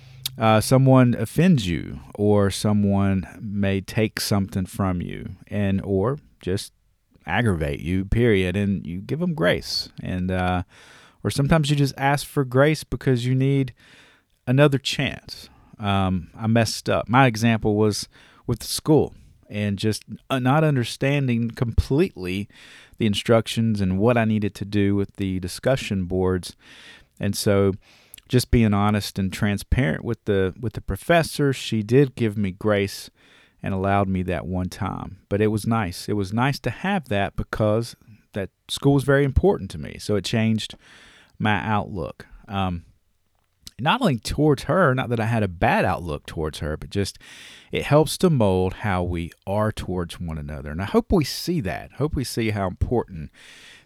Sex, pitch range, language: male, 95-125 Hz, English